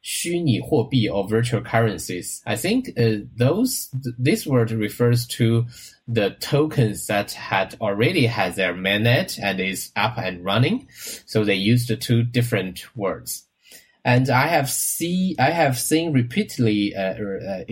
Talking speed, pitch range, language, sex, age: 135 wpm, 110-135 Hz, English, male, 20-39